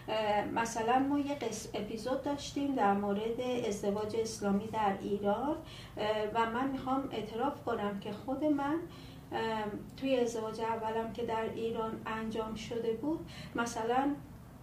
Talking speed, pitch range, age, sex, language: 120 wpm, 210-250 Hz, 40-59, female, Persian